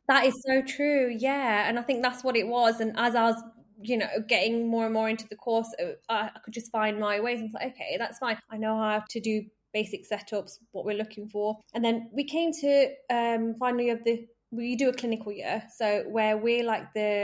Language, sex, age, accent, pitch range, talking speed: English, female, 20-39, British, 205-235 Hz, 245 wpm